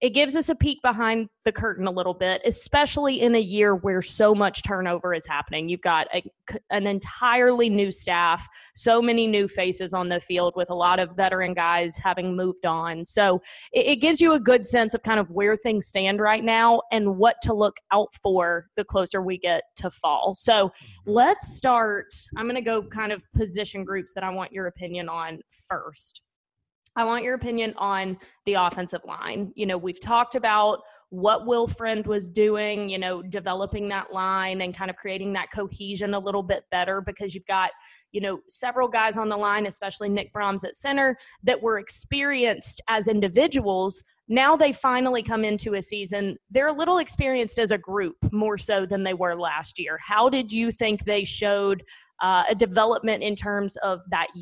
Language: English